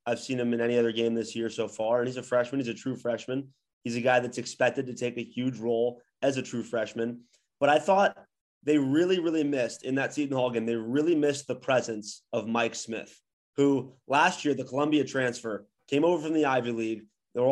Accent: American